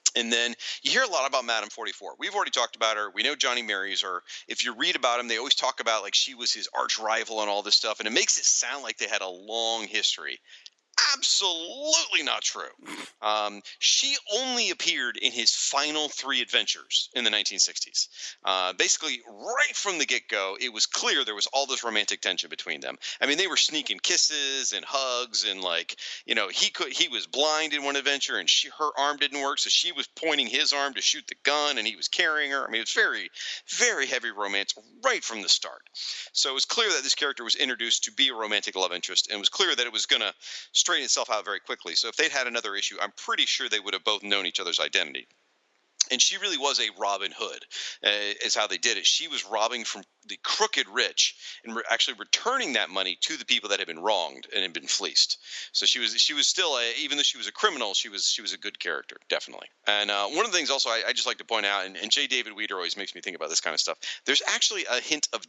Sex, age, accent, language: male, 40-59, American, English